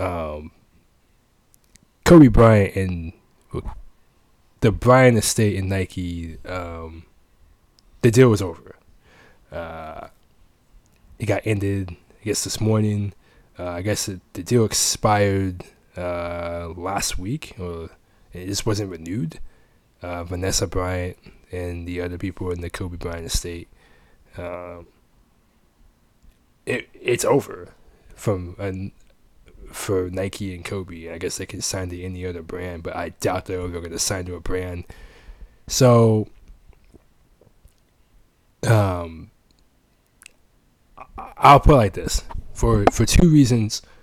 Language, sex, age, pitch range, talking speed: English, male, 20-39, 85-105 Hz, 120 wpm